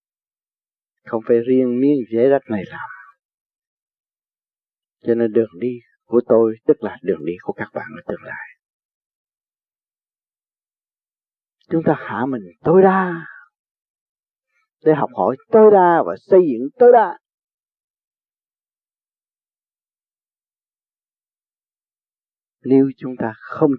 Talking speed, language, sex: 110 wpm, Vietnamese, male